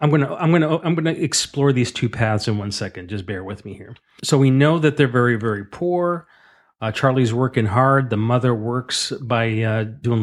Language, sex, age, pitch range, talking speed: English, male, 40-59, 105-130 Hz, 210 wpm